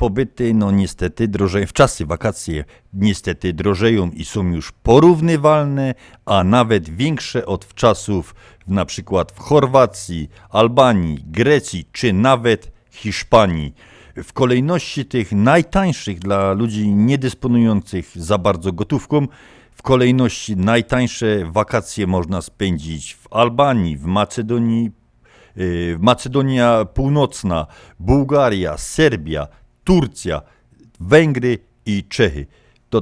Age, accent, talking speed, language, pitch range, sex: 50-69, native, 105 wpm, Polish, 95-130 Hz, male